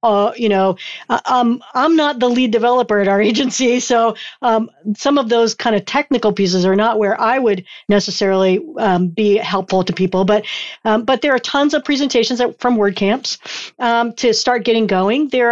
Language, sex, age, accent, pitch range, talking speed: English, female, 50-69, American, 210-255 Hz, 195 wpm